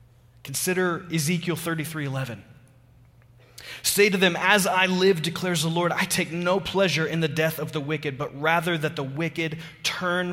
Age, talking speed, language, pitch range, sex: 30-49, 170 wpm, English, 125-175 Hz, male